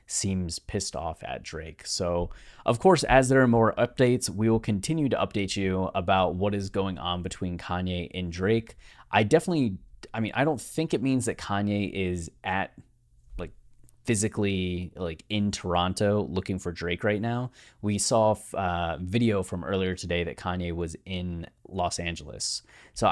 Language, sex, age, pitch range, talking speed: English, male, 30-49, 90-115 Hz, 170 wpm